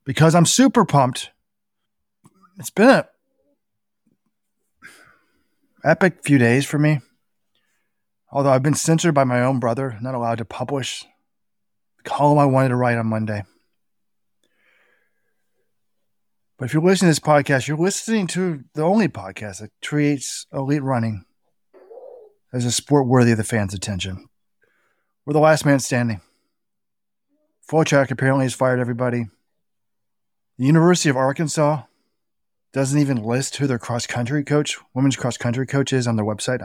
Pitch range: 120-160 Hz